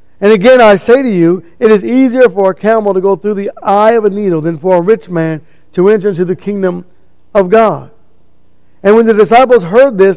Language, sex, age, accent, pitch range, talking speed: English, male, 50-69, American, 130-225 Hz, 225 wpm